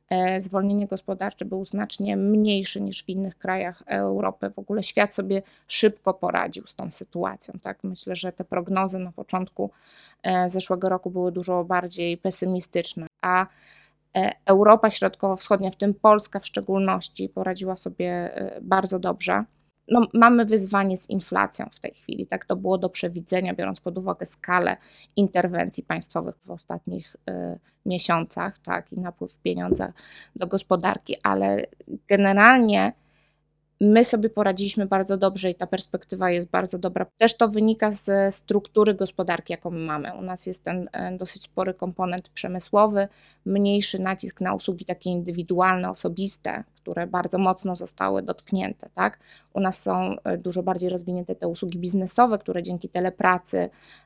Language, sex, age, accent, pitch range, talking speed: Polish, female, 20-39, native, 180-195 Hz, 140 wpm